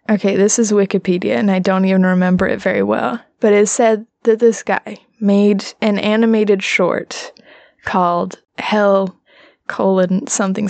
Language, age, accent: English, 20-39, American